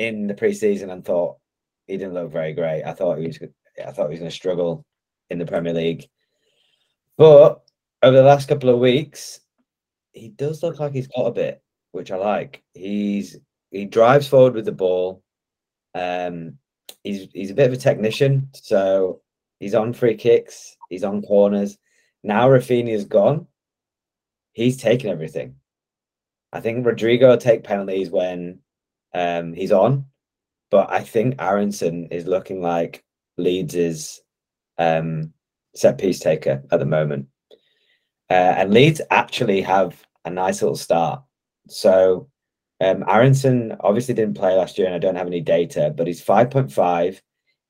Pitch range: 90-125 Hz